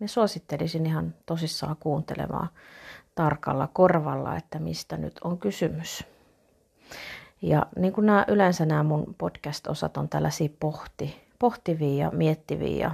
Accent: native